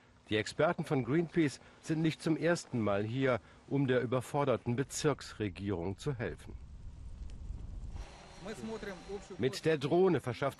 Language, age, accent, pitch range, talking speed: German, 50-69, German, 115-150 Hz, 115 wpm